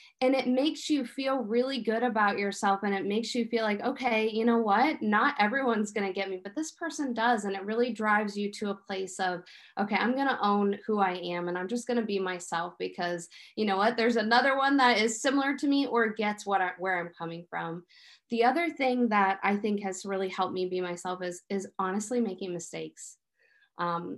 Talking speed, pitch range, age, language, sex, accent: 225 wpm, 195-245 Hz, 20-39, English, female, American